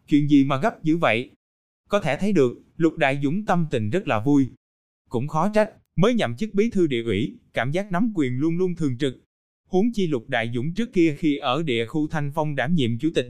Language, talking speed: Vietnamese, 240 wpm